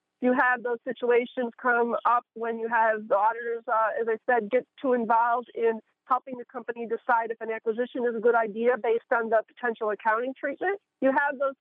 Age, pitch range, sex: 50-69, 225-255 Hz, female